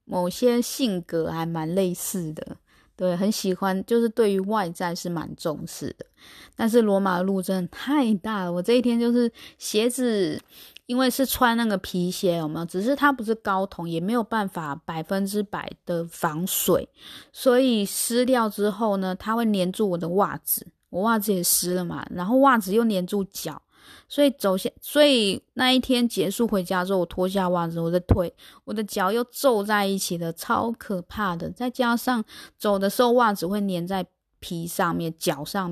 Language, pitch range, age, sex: Chinese, 175-230 Hz, 20-39, female